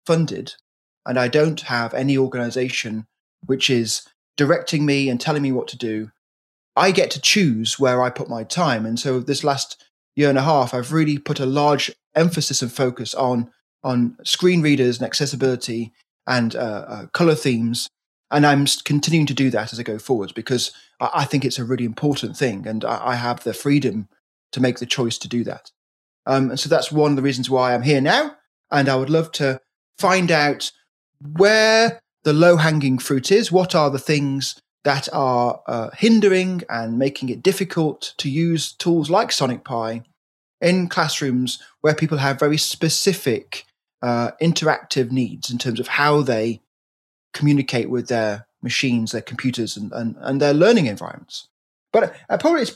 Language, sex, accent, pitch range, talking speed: Dutch, male, British, 120-155 Hz, 175 wpm